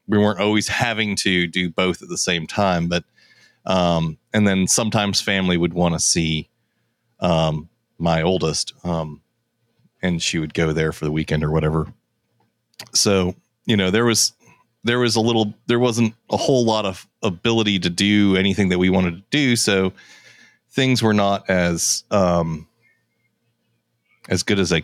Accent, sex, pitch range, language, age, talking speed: American, male, 90-115 Hz, English, 30-49, 165 wpm